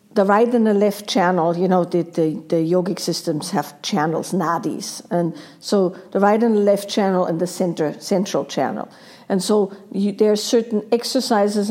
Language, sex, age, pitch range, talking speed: English, female, 50-69, 180-220 Hz, 185 wpm